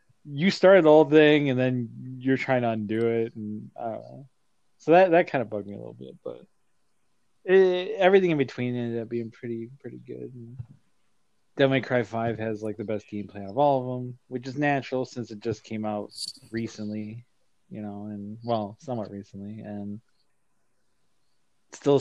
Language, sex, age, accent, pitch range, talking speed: English, male, 20-39, American, 105-130 Hz, 190 wpm